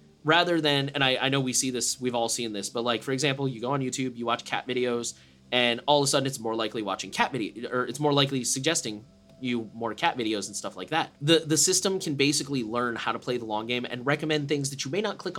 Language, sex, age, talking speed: English, male, 20-39, 270 wpm